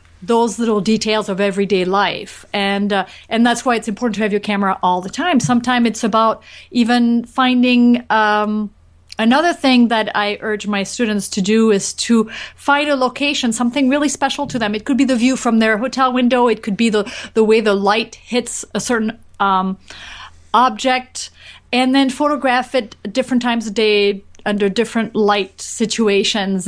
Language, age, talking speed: English, 30-49, 180 wpm